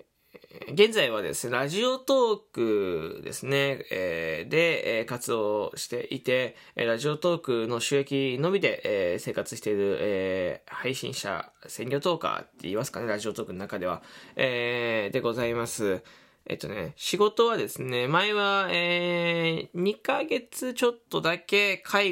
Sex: male